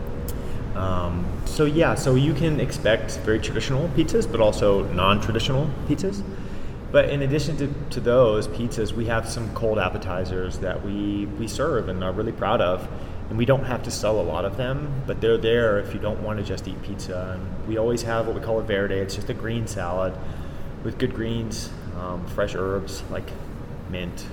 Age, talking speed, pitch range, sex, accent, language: 30-49, 190 wpm, 95-115 Hz, male, American, English